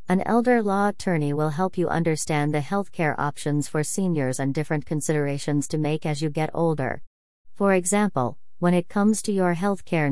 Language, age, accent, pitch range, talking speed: English, 40-59, American, 140-175 Hz, 180 wpm